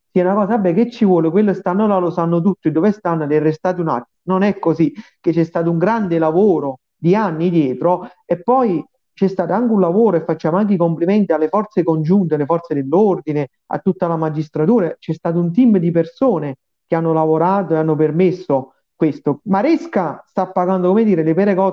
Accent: native